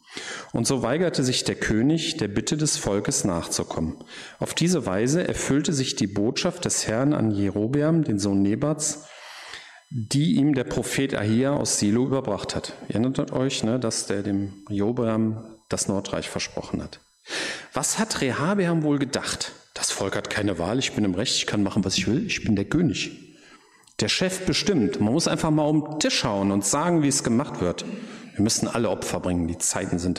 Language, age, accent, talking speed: German, 40-59, German, 190 wpm